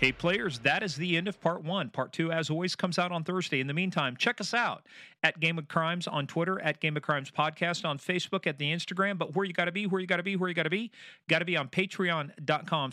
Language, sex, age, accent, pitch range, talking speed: English, male, 40-59, American, 145-175 Hz, 280 wpm